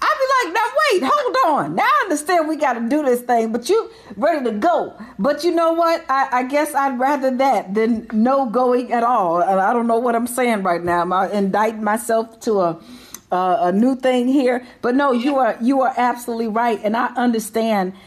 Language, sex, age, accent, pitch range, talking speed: English, female, 40-59, American, 200-260 Hz, 220 wpm